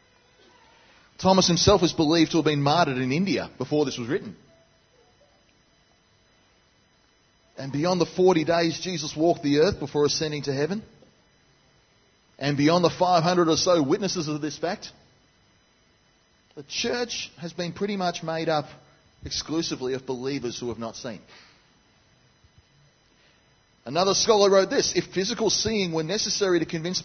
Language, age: English, 30-49